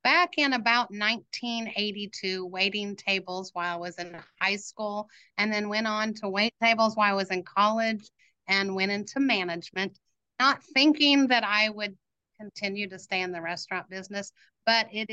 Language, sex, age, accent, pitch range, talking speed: English, female, 40-59, American, 185-220 Hz, 165 wpm